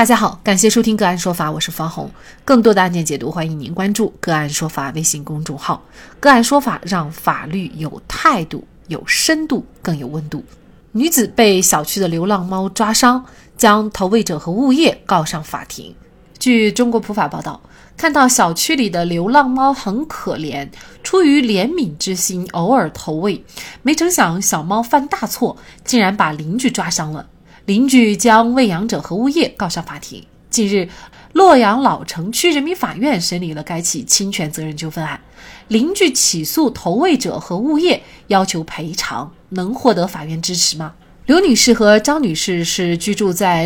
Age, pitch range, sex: 30-49, 170-245 Hz, female